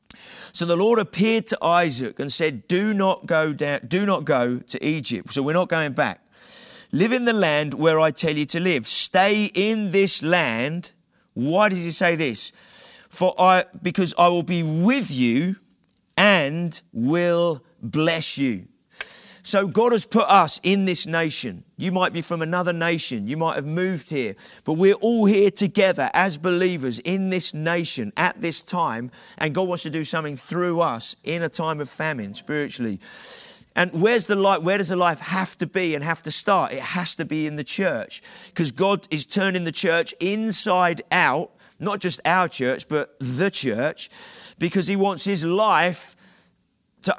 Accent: British